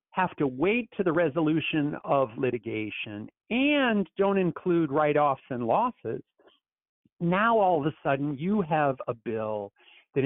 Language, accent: English, American